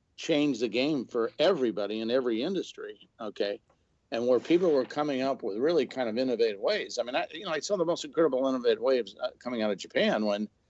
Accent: American